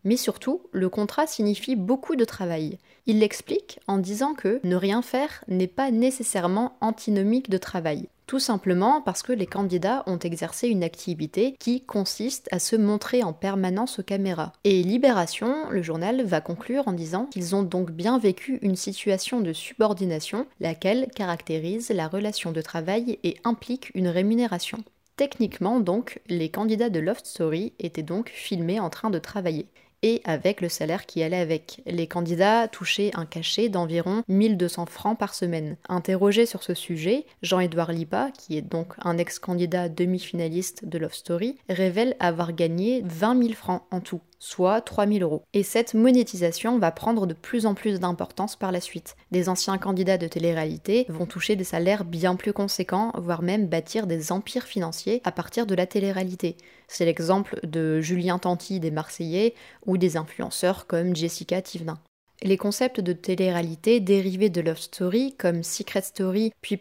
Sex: female